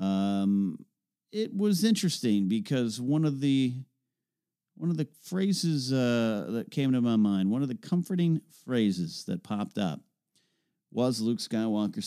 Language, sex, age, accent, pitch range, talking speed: English, male, 40-59, American, 100-145 Hz, 145 wpm